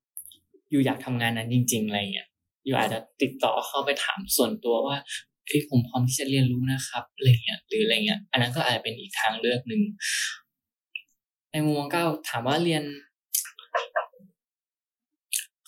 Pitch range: 115-145 Hz